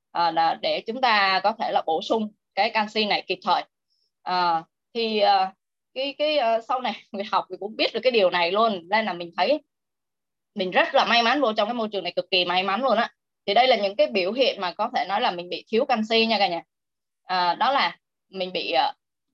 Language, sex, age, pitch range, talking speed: Vietnamese, female, 10-29, 195-270 Hz, 240 wpm